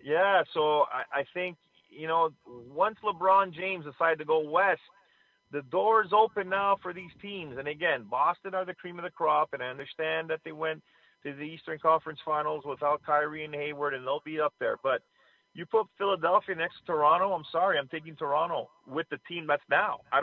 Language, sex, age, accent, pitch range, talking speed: English, male, 30-49, American, 150-185 Hz, 205 wpm